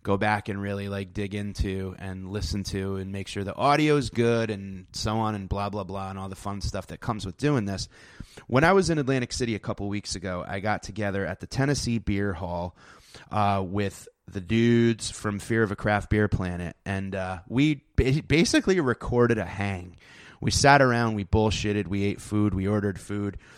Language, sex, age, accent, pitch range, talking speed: English, male, 30-49, American, 100-115 Hz, 205 wpm